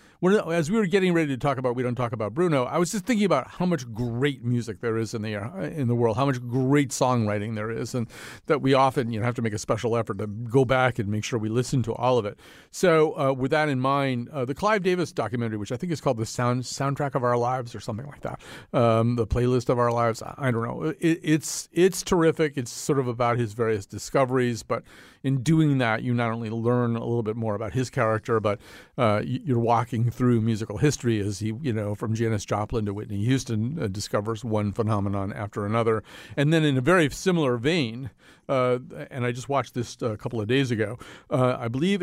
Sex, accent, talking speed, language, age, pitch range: male, American, 235 wpm, English, 40-59, 115-145 Hz